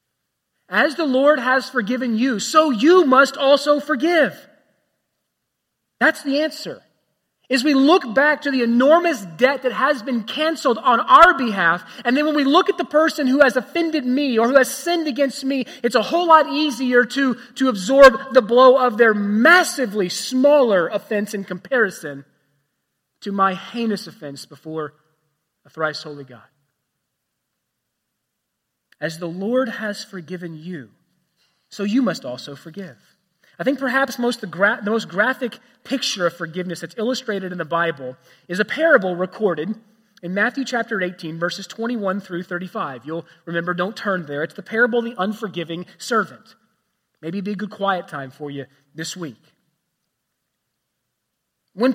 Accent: American